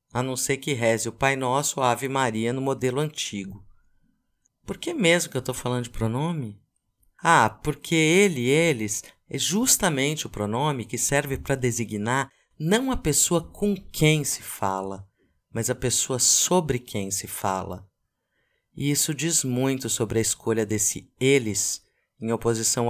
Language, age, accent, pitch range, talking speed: Portuguese, 50-69, Brazilian, 110-155 Hz, 155 wpm